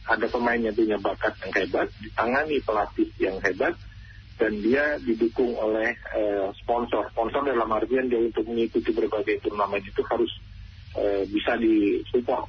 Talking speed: 140 wpm